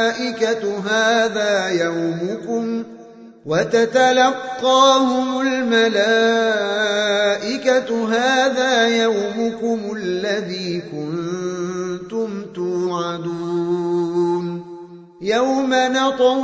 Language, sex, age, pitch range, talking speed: Indonesian, male, 30-49, 200-255 Hz, 40 wpm